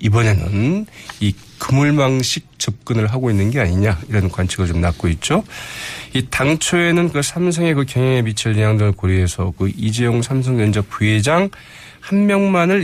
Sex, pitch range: male, 100-145 Hz